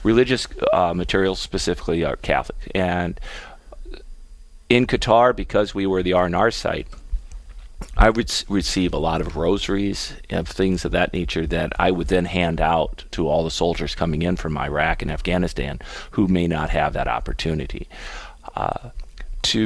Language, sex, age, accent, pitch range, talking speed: English, male, 40-59, American, 85-105 Hz, 160 wpm